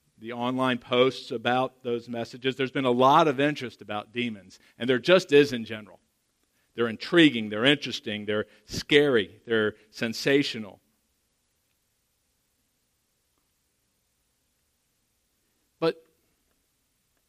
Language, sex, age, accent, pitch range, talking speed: English, male, 50-69, American, 110-140 Hz, 100 wpm